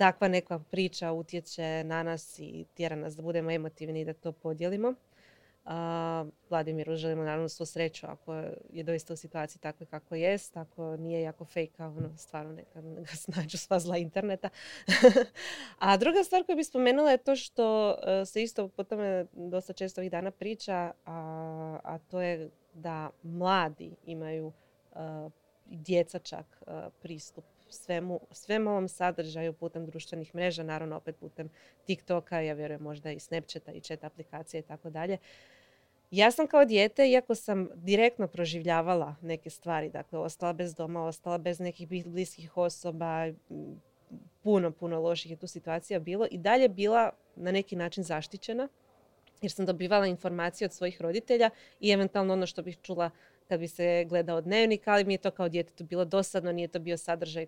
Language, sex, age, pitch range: Croatian, female, 20-39, 165-190 Hz